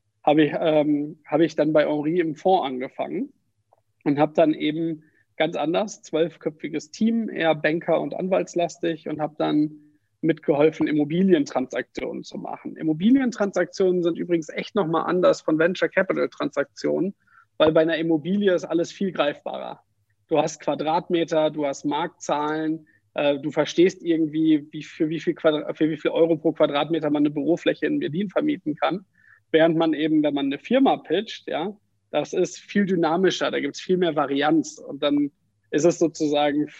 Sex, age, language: male, 50-69, German